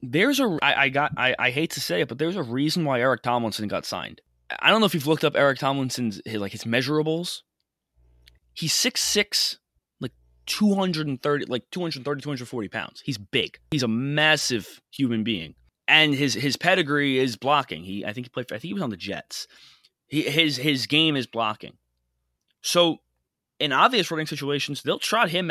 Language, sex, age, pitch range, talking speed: English, male, 20-39, 110-155 Hz, 190 wpm